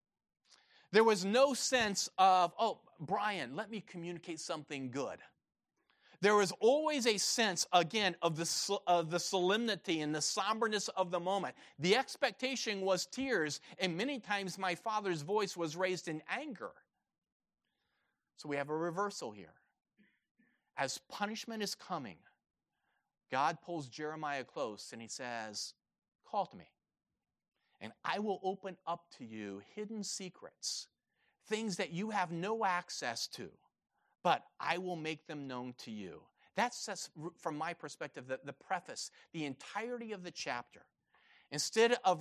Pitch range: 145-205 Hz